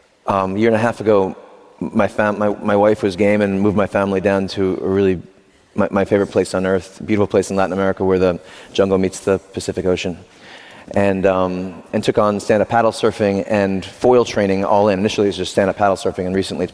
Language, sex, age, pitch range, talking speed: English, male, 30-49, 95-110 Hz, 235 wpm